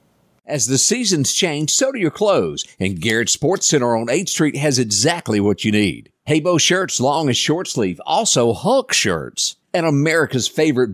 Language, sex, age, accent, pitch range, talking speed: English, male, 50-69, American, 105-155 Hz, 175 wpm